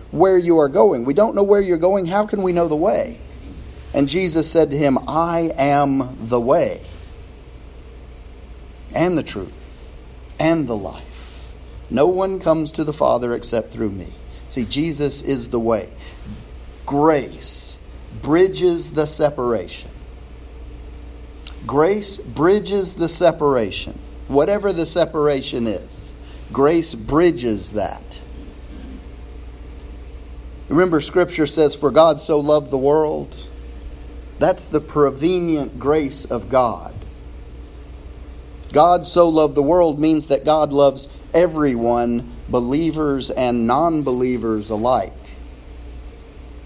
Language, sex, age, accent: English, male, 50-69, American